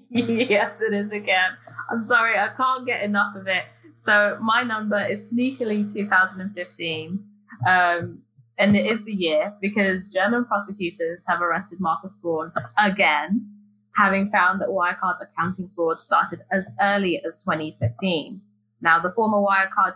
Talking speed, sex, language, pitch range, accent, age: 140 wpm, female, English, 165-205 Hz, British, 20-39